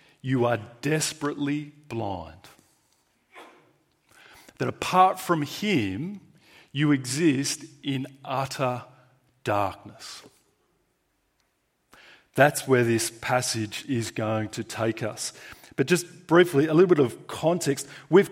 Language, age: English, 40-59